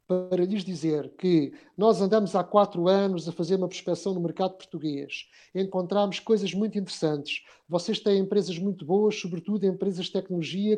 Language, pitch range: Portuguese, 165-195 Hz